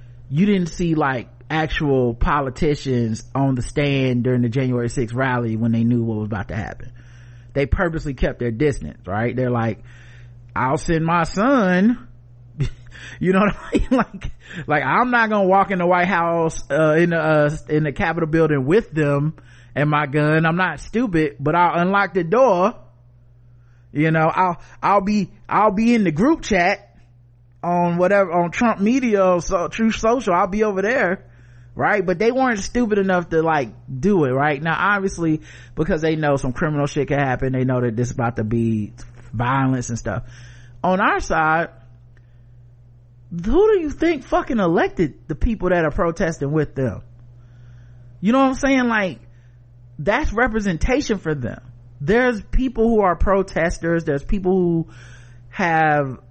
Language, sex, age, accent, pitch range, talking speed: English, male, 30-49, American, 120-185 Hz, 175 wpm